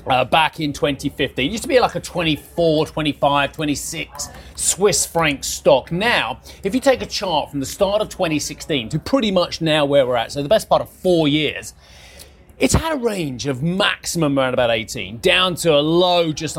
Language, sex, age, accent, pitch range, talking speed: English, male, 30-49, British, 135-180 Hz, 195 wpm